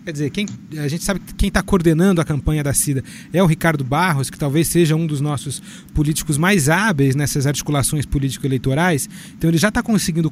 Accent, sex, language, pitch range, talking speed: Brazilian, male, Portuguese, 150-195 Hz, 205 wpm